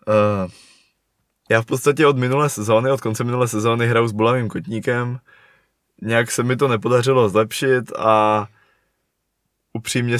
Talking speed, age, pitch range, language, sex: 135 wpm, 20-39, 100-115 Hz, Czech, male